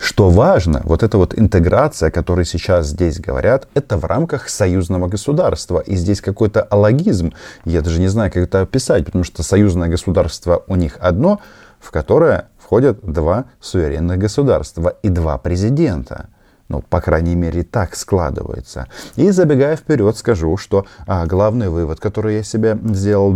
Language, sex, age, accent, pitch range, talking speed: Russian, male, 30-49, native, 80-100 Hz, 155 wpm